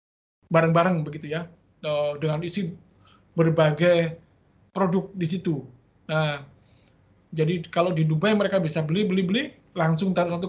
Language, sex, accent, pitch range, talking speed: Indonesian, male, native, 160-205 Hz, 125 wpm